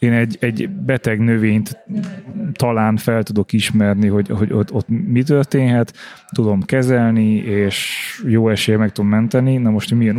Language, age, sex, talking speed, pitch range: Hungarian, 20-39, male, 160 wpm, 105-115 Hz